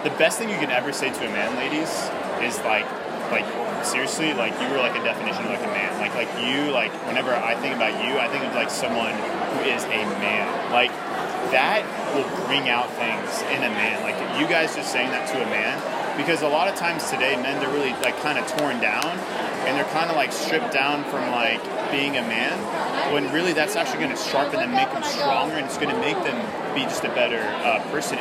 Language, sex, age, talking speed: English, male, 30-49, 235 wpm